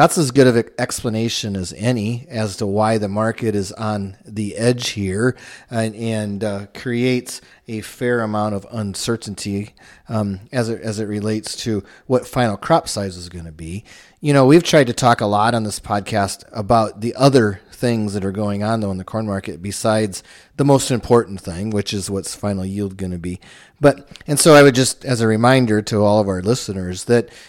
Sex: male